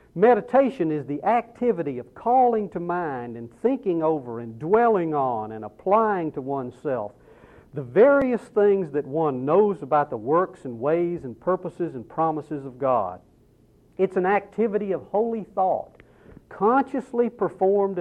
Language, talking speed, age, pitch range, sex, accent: English, 145 wpm, 60-79, 140-205 Hz, male, American